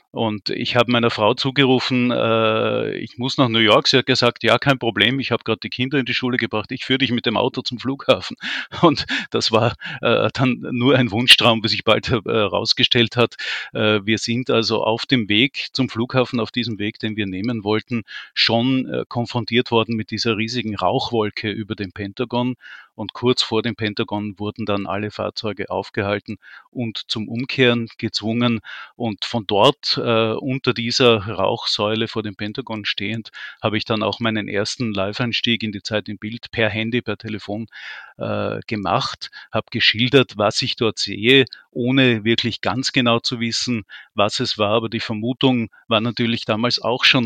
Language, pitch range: German, 110-125 Hz